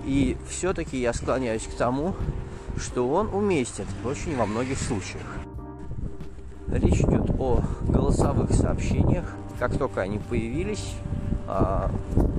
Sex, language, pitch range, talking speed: male, Russian, 95-120 Hz, 105 wpm